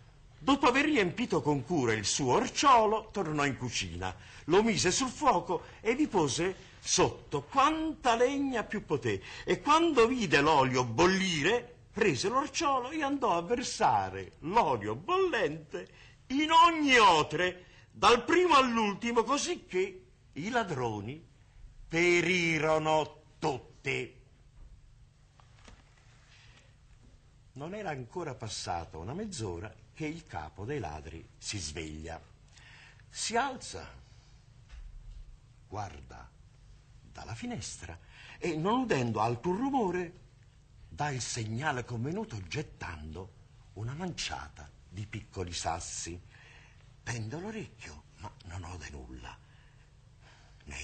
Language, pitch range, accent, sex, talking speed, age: Italian, 110-180 Hz, native, male, 105 wpm, 50-69